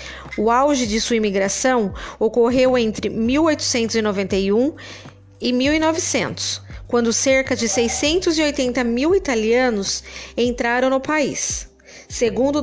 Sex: female